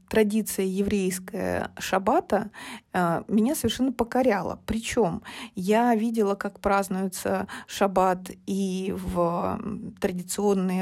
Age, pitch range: 30-49, 190-240 Hz